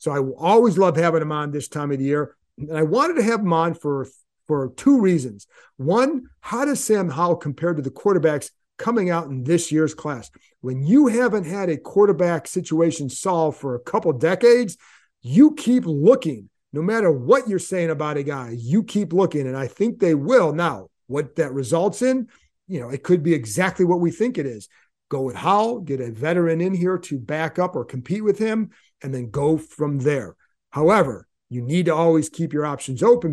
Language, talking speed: English, 205 wpm